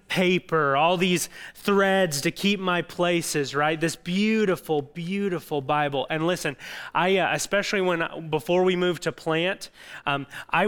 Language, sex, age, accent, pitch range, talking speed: English, male, 30-49, American, 165-205 Hz, 145 wpm